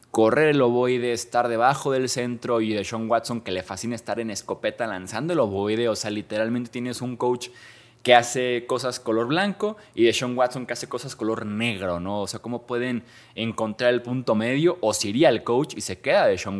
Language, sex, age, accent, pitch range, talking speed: Spanish, male, 20-39, Mexican, 105-130 Hz, 215 wpm